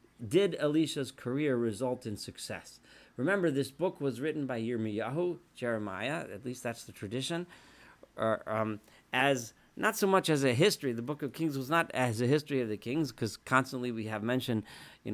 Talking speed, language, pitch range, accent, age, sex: 180 wpm, English, 120-160 Hz, American, 40-59, male